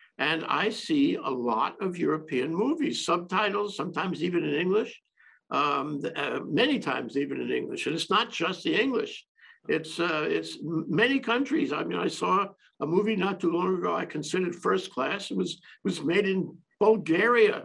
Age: 60-79